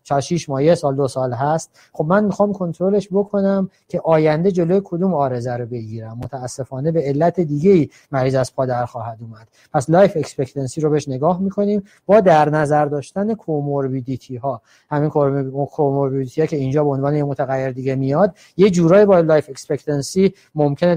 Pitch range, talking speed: 140-190 Hz, 165 wpm